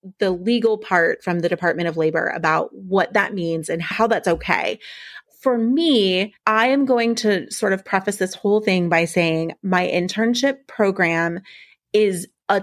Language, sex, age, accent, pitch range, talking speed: English, female, 30-49, American, 175-225 Hz, 165 wpm